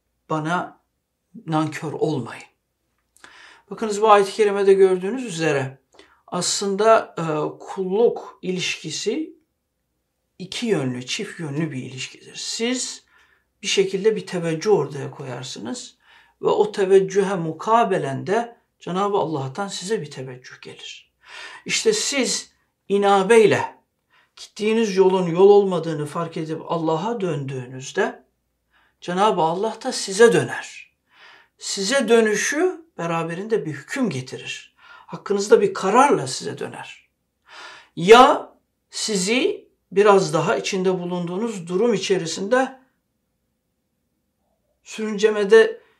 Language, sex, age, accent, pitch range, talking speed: Turkish, male, 60-79, native, 170-235 Hz, 95 wpm